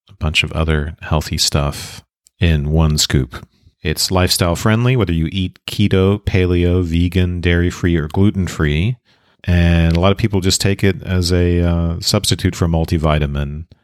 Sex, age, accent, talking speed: male, 40-59, American, 150 wpm